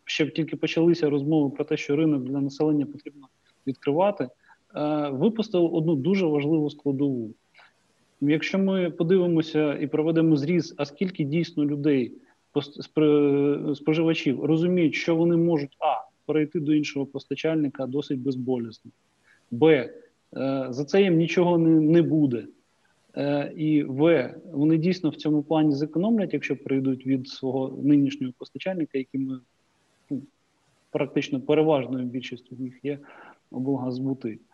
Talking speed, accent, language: 120 wpm, native, Ukrainian